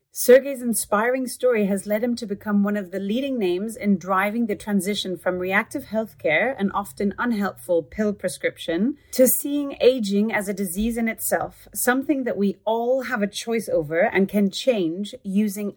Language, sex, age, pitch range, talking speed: English, female, 30-49, 185-235 Hz, 170 wpm